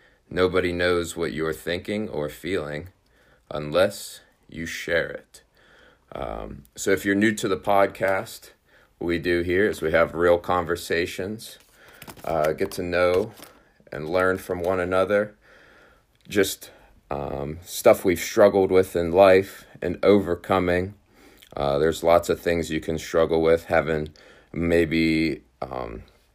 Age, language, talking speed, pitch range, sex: 30-49, English, 135 wpm, 80-95 Hz, male